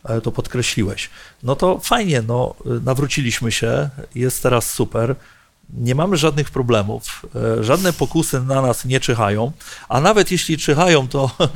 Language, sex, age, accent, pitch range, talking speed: Polish, male, 40-59, native, 115-145 Hz, 130 wpm